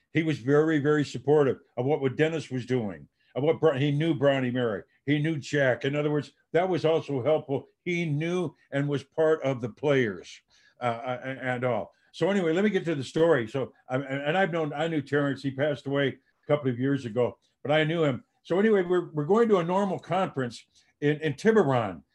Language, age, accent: English, 60-79, American